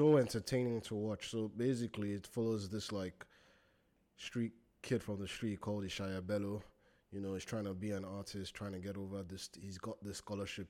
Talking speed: 195 wpm